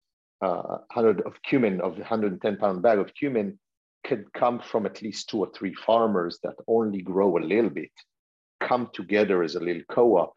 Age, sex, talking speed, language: 50-69, male, 180 wpm, English